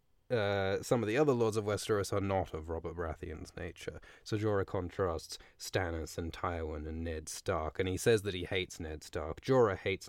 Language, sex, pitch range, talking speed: English, male, 90-115 Hz, 195 wpm